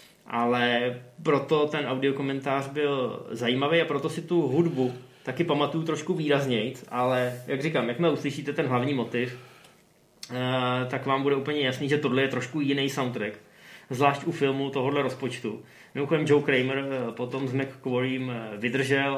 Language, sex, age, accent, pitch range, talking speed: Czech, male, 20-39, native, 125-150 Hz, 145 wpm